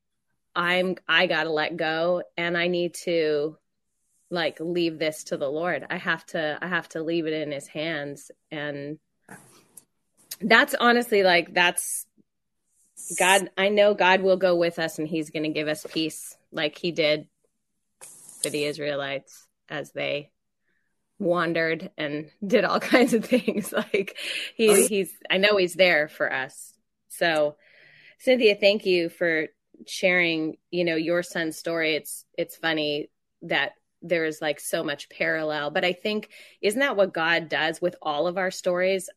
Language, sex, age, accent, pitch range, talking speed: English, female, 20-39, American, 160-190 Hz, 160 wpm